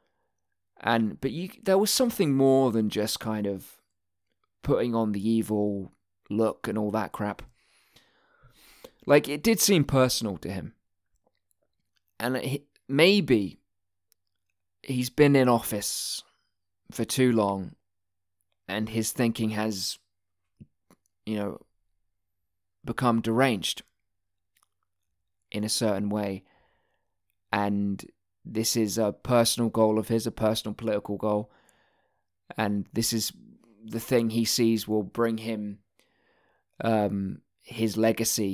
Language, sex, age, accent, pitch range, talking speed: English, male, 20-39, British, 100-120 Hz, 115 wpm